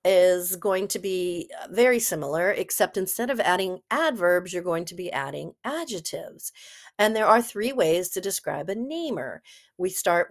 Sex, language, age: female, English, 40-59